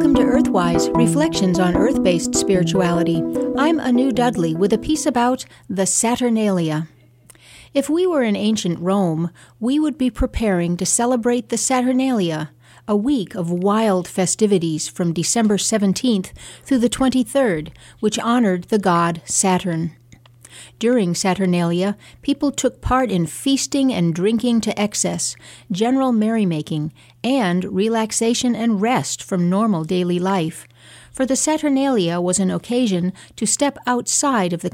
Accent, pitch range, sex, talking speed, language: American, 175-240 Hz, female, 135 wpm, English